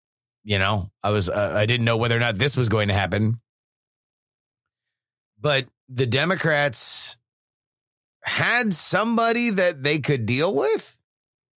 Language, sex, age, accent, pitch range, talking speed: English, male, 30-49, American, 115-150 Hz, 135 wpm